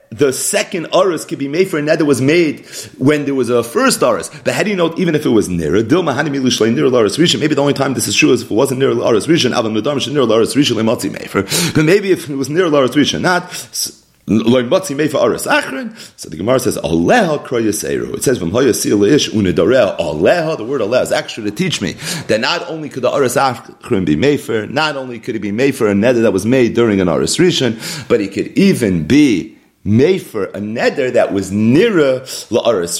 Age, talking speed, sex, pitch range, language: 30-49, 195 wpm, male, 110-155 Hz, English